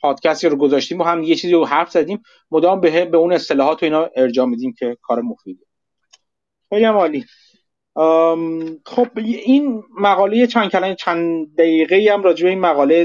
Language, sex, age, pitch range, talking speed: Persian, male, 30-49, 145-210 Hz, 145 wpm